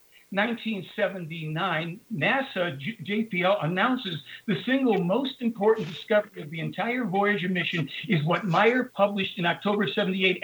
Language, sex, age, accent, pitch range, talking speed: English, male, 60-79, American, 175-220 Hz, 120 wpm